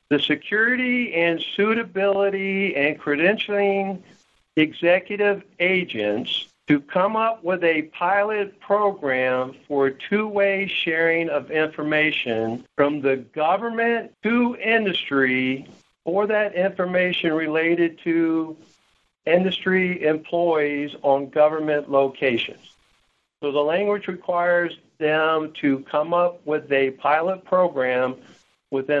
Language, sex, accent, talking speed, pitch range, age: English, male, American, 100 wpm, 145-185 Hz, 60-79